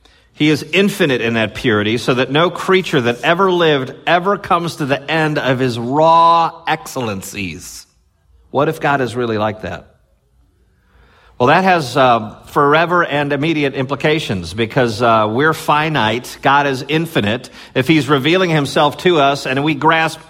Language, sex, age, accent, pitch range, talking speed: English, male, 50-69, American, 110-155 Hz, 155 wpm